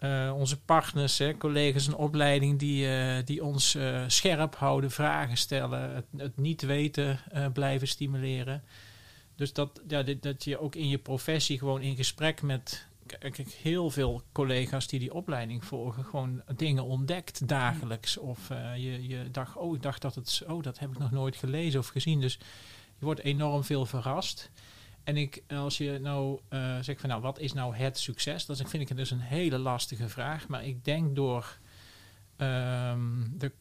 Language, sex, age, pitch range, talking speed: Dutch, male, 40-59, 125-145 Hz, 180 wpm